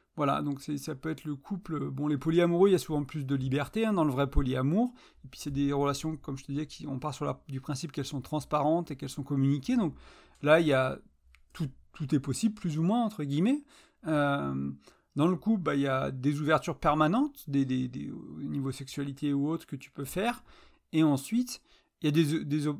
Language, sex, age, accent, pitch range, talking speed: French, male, 40-59, French, 135-165 Hz, 235 wpm